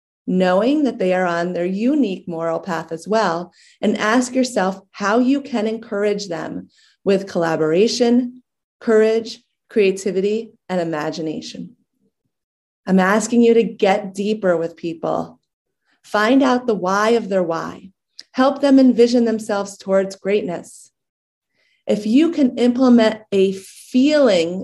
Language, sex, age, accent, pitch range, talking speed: English, female, 30-49, American, 185-235 Hz, 125 wpm